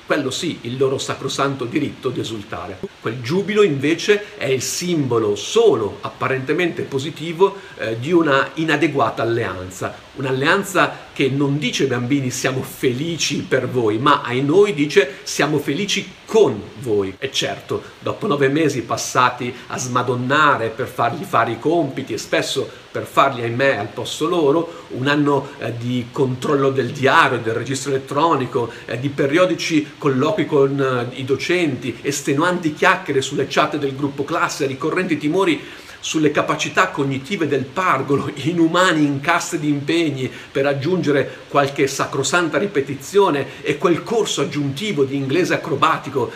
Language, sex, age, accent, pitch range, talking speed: Italian, male, 50-69, native, 125-150 Hz, 140 wpm